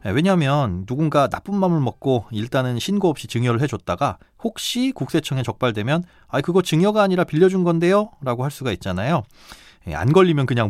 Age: 30-49